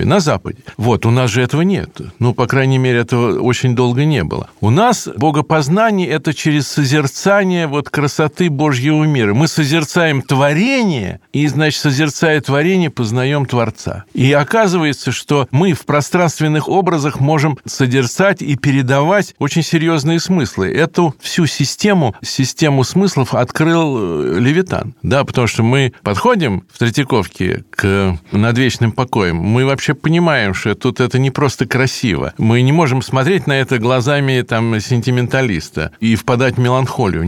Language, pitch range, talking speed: Russian, 120-150 Hz, 140 wpm